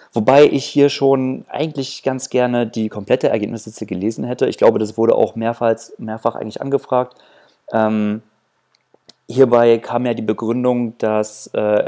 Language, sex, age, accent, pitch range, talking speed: German, male, 30-49, German, 110-130 Hz, 145 wpm